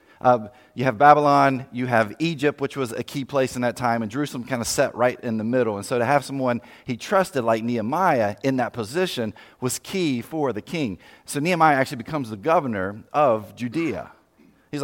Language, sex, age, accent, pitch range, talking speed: English, male, 30-49, American, 105-135 Hz, 200 wpm